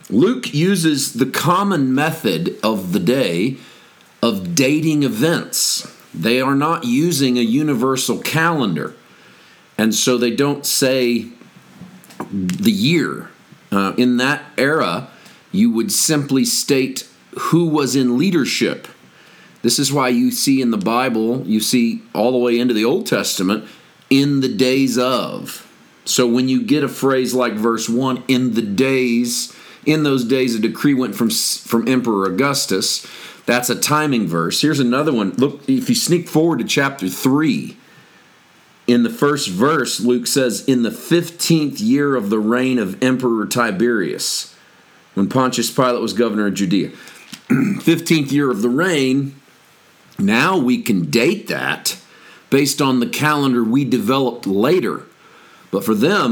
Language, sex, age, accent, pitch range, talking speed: English, male, 40-59, American, 120-140 Hz, 150 wpm